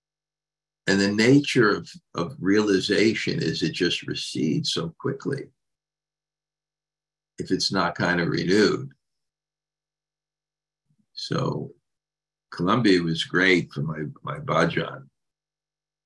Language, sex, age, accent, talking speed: English, male, 50-69, American, 95 wpm